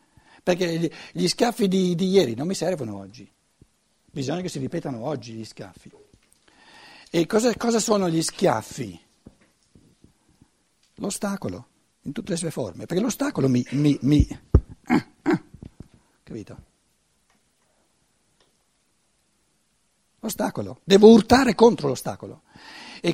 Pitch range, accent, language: 135-205 Hz, native, Italian